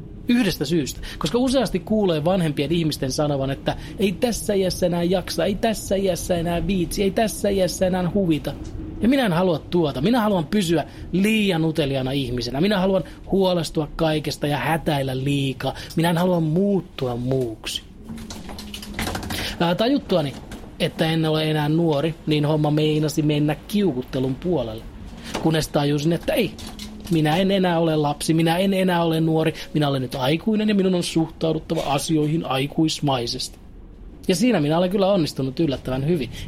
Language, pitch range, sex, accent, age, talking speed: Finnish, 140-185 Hz, male, native, 30-49, 150 wpm